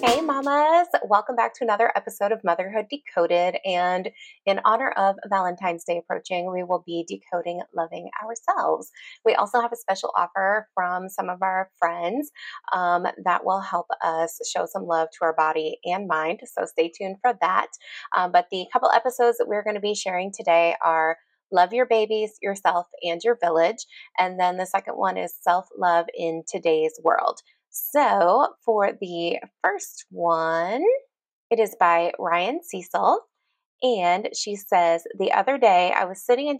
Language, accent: English, American